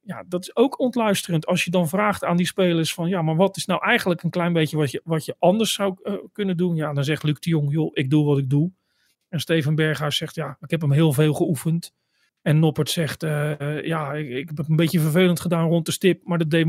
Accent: Dutch